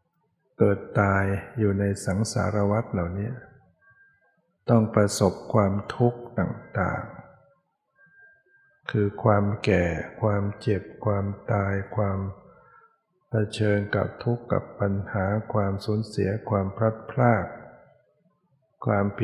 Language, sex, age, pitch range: Thai, male, 60-79, 100-145 Hz